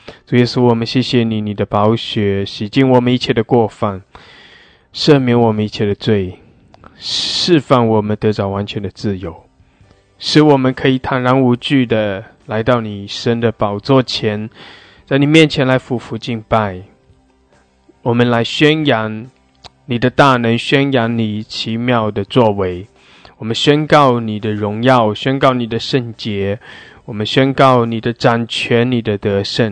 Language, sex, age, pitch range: English, male, 20-39, 105-125 Hz